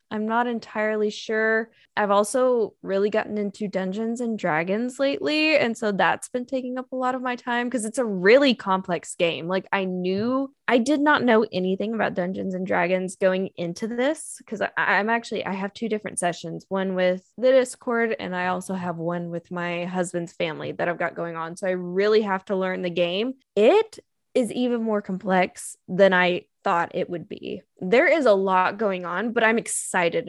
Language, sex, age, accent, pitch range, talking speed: English, female, 10-29, American, 185-235 Hz, 195 wpm